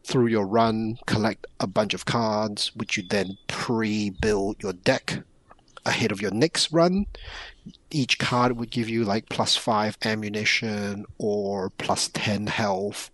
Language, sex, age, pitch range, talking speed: English, male, 30-49, 100-120 Hz, 145 wpm